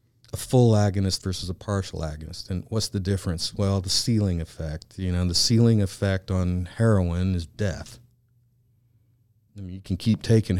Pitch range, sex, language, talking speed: 100-115 Hz, male, English, 160 wpm